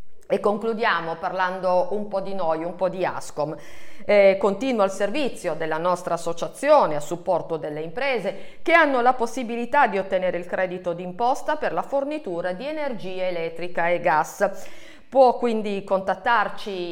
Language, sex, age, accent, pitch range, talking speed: Italian, female, 50-69, native, 185-270 Hz, 150 wpm